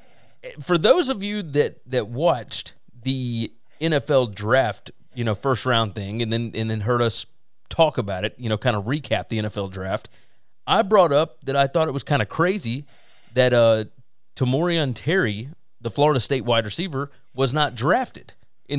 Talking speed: 175 wpm